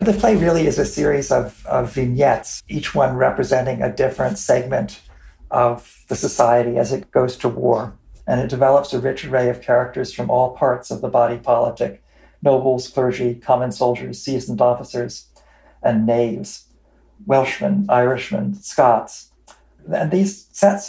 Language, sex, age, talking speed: English, male, 50-69, 150 wpm